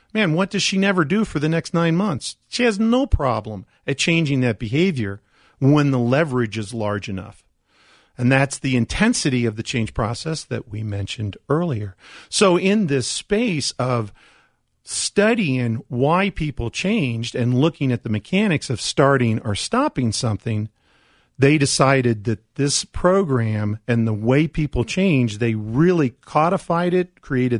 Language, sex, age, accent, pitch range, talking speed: English, male, 40-59, American, 110-160 Hz, 155 wpm